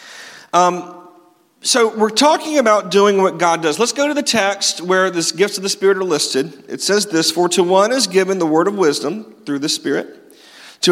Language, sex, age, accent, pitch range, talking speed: English, male, 40-59, American, 160-205 Hz, 210 wpm